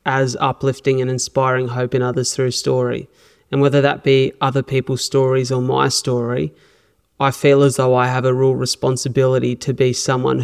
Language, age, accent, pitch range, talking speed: English, 20-39, Australian, 125-135 Hz, 180 wpm